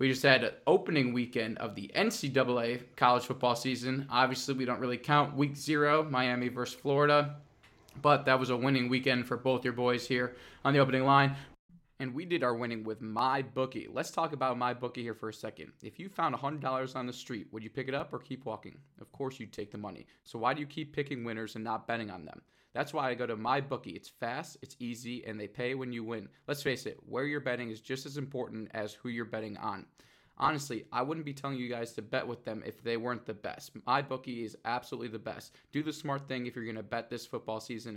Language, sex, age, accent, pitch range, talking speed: English, male, 20-39, American, 115-135 Hz, 240 wpm